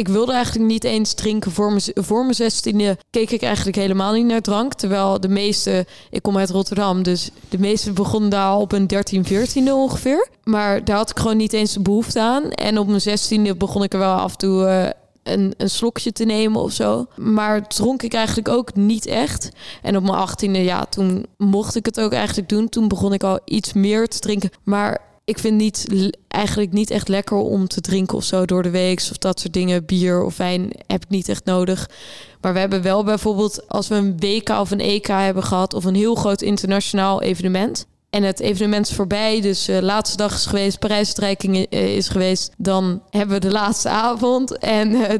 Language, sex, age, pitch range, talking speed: Dutch, female, 20-39, 195-215 Hz, 215 wpm